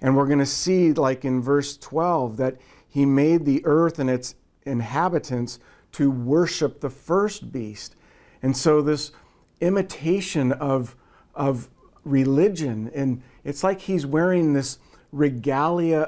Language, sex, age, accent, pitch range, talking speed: English, male, 40-59, American, 130-165 Hz, 130 wpm